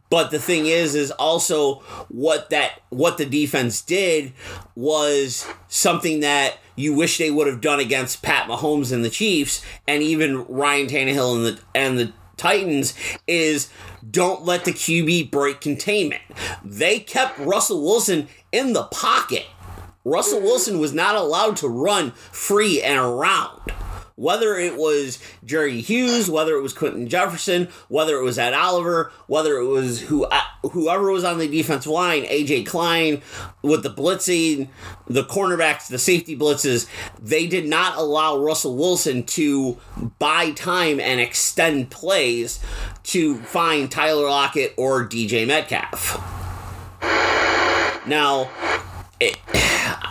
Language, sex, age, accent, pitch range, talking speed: English, male, 30-49, American, 125-170 Hz, 140 wpm